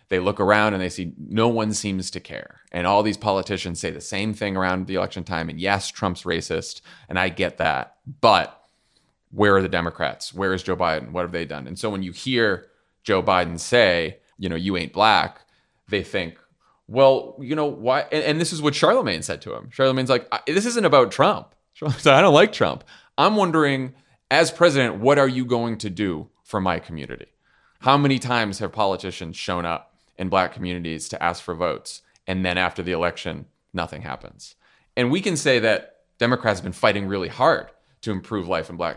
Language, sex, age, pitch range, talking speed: English, male, 30-49, 90-115 Hz, 200 wpm